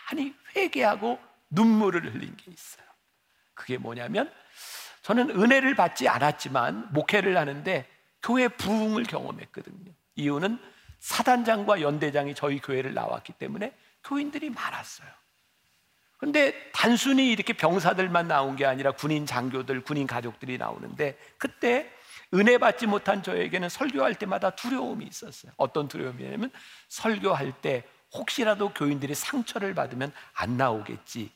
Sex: male